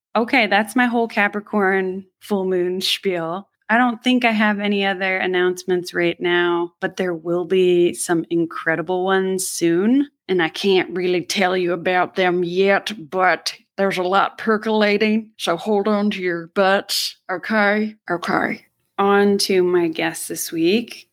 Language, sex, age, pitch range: English, female, 20-39, 165-210 Hz